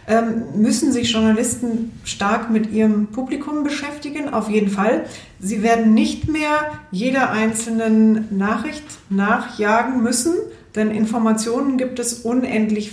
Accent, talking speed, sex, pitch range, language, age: German, 115 wpm, female, 200-235 Hz, German, 40-59